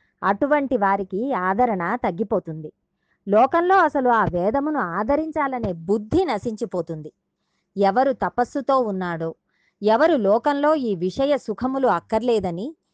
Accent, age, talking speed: native, 20-39, 95 wpm